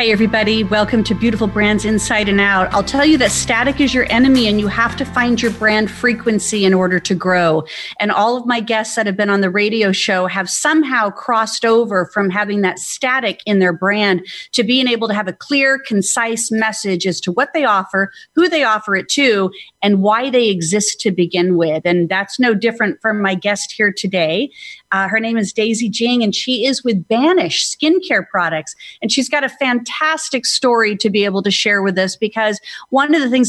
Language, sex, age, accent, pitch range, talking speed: English, female, 40-59, American, 195-240 Hz, 210 wpm